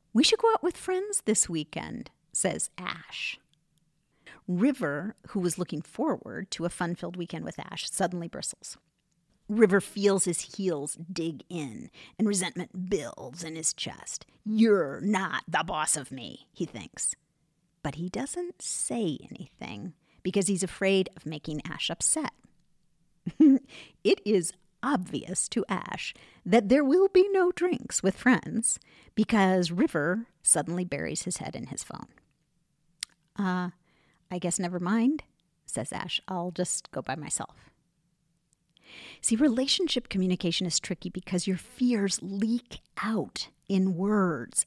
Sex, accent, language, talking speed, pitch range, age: female, American, English, 135 wpm, 170-225 Hz, 50-69